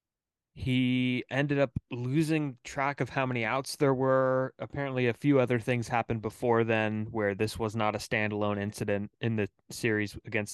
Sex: male